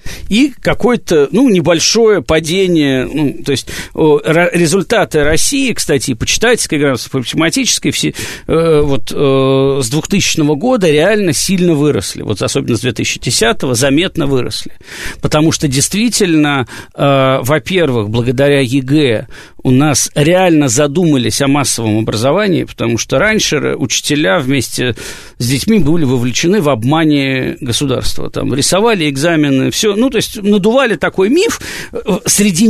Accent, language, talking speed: native, Russian, 115 wpm